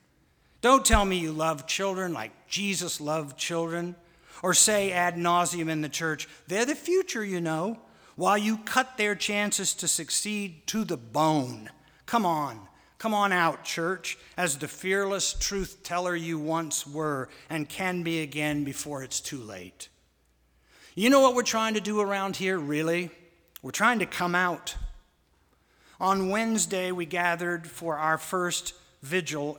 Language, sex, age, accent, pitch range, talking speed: English, male, 60-79, American, 155-195 Hz, 155 wpm